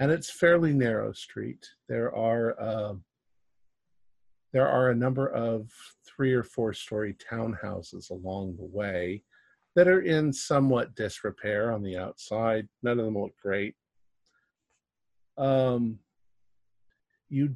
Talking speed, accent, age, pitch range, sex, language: 125 wpm, American, 50-69, 100-130 Hz, male, English